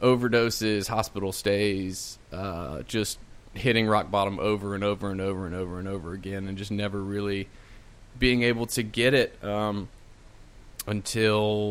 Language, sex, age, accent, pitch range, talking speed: English, male, 20-39, American, 100-115 Hz, 150 wpm